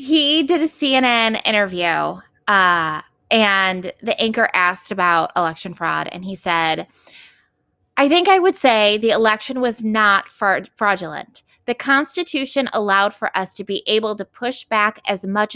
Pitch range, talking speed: 195-275 Hz, 150 wpm